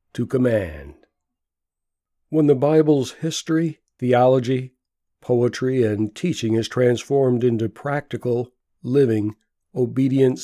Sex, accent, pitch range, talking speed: male, American, 110-135 Hz, 90 wpm